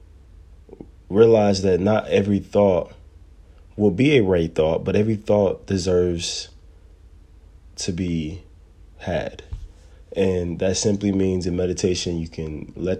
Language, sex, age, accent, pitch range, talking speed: English, male, 20-39, American, 80-95 Hz, 120 wpm